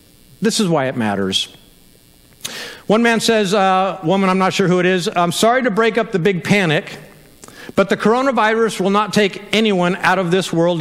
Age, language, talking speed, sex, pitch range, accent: 50-69, English, 195 wpm, male, 180-225 Hz, American